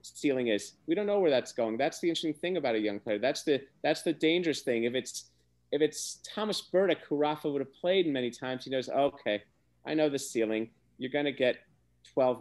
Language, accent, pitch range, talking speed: English, American, 110-150 Hz, 225 wpm